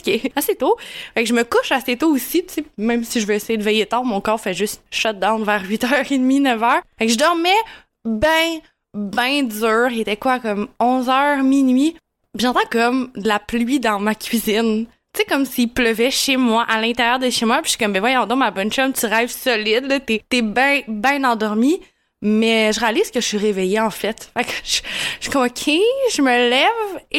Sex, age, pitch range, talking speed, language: female, 20-39, 220-285 Hz, 230 wpm, French